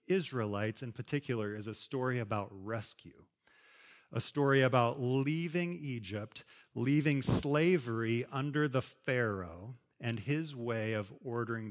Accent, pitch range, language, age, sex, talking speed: American, 110-140 Hz, English, 40-59, male, 120 wpm